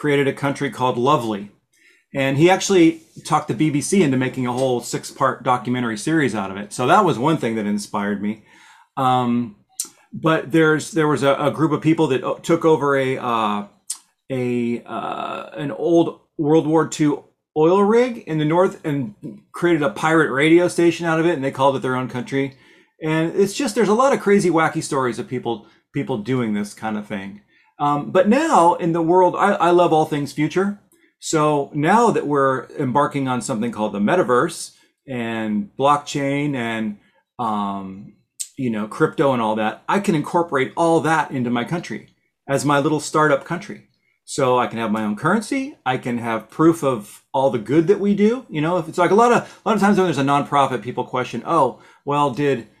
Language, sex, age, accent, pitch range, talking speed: English, male, 40-59, American, 125-170 Hz, 195 wpm